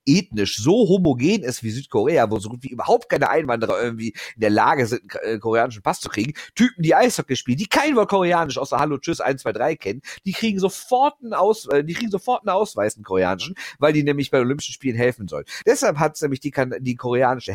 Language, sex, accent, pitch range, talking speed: German, male, German, 115-160 Hz, 225 wpm